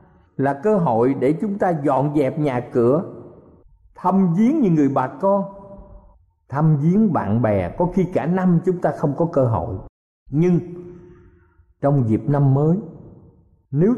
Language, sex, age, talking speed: Vietnamese, male, 50-69, 155 wpm